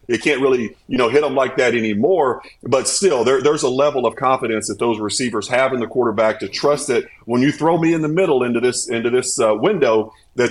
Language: English